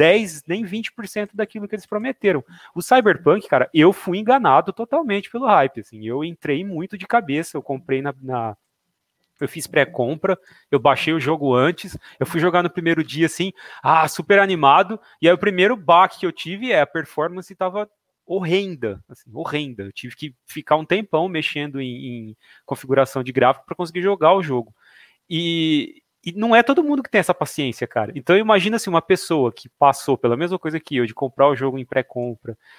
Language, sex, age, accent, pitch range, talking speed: Portuguese, male, 30-49, Brazilian, 130-190 Hz, 195 wpm